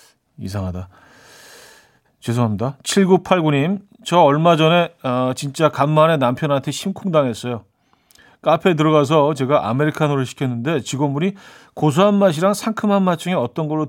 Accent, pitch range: native, 120-165 Hz